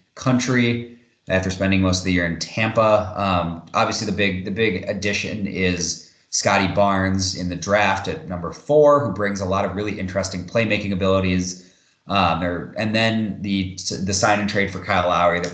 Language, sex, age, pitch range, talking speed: English, male, 30-49, 90-105 Hz, 180 wpm